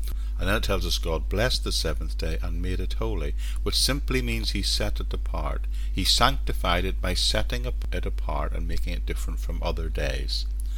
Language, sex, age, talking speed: English, male, 50-69, 195 wpm